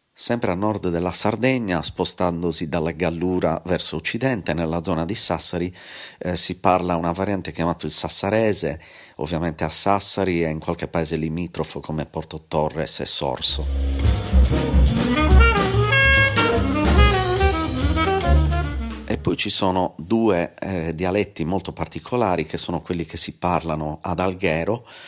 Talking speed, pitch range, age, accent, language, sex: 125 wpm, 80-90 Hz, 40-59, native, Italian, male